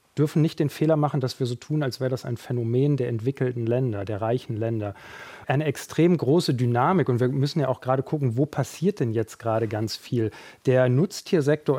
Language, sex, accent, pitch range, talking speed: German, male, German, 125-150 Hz, 205 wpm